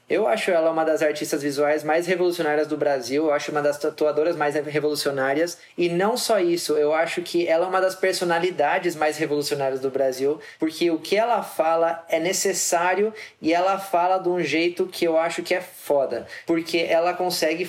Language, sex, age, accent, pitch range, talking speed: English, male, 20-39, Brazilian, 155-185 Hz, 190 wpm